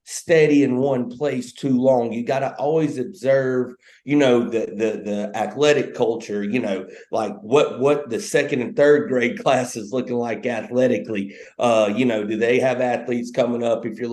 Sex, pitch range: male, 115-130 Hz